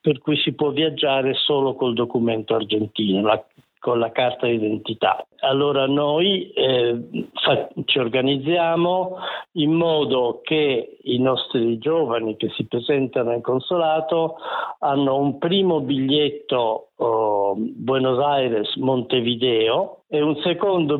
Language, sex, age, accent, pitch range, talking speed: Italian, male, 50-69, native, 125-165 Hz, 115 wpm